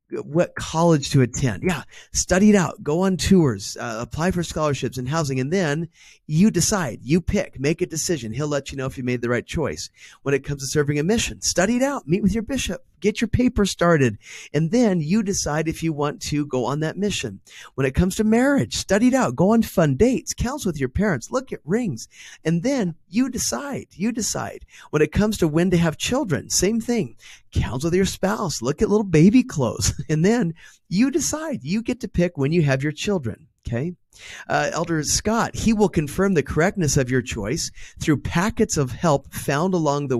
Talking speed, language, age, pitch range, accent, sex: 210 wpm, English, 30-49, 135-195 Hz, American, male